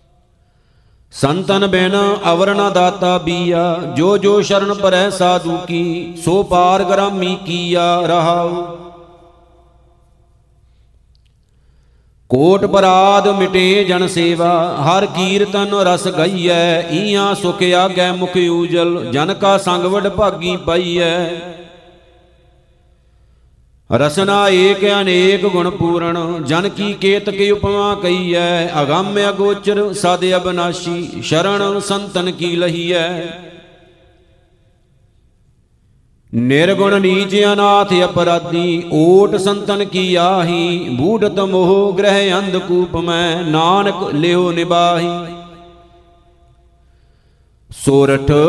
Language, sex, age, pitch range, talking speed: Punjabi, male, 50-69, 170-195 Hz, 90 wpm